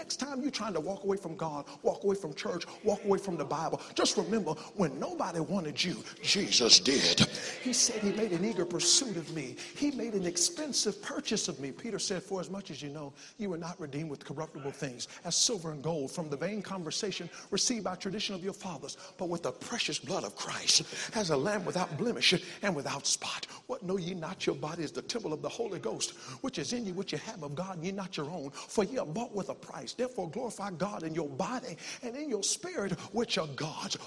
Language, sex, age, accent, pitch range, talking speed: English, male, 50-69, American, 175-255 Hz, 235 wpm